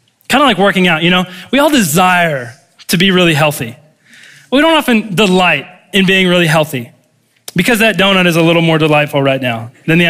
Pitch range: 130-180 Hz